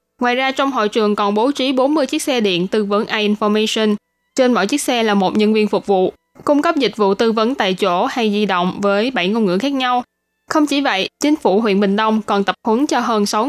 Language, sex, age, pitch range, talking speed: Vietnamese, female, 10-29, 200-250 Hz, 255 wpm